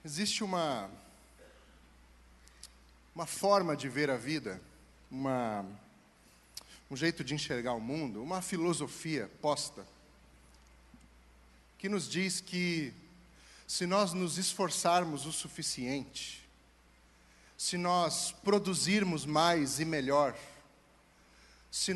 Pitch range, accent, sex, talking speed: 120-175 Hz, Brazilian, male, 95 wpm